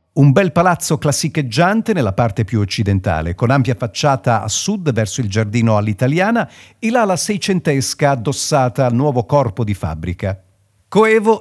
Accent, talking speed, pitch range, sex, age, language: native, 140 wpm, 110-155 Hz, male, 50-69, Italian